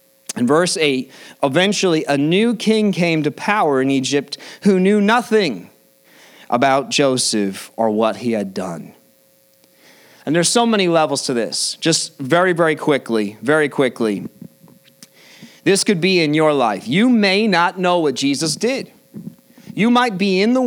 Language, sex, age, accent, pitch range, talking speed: English, male, 30-49, American, 140-185 Hz, 155 wpm